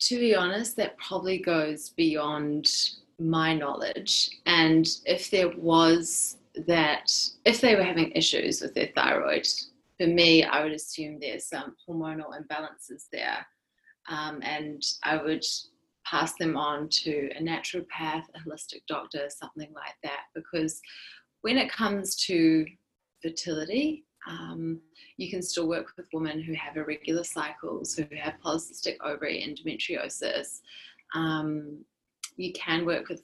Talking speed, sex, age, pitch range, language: 135 wpm, female, 20-39, 155-185 Hz, English